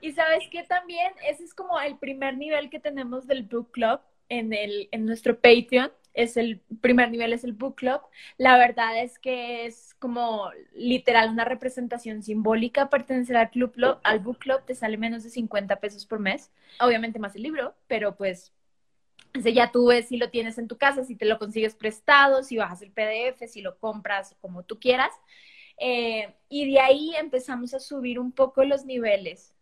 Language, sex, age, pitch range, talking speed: Spanish, female, 20-39, 230-275 Hz, 190 wpm